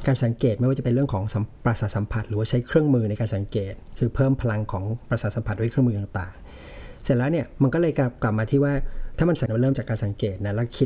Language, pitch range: Thai, 105-130 Hz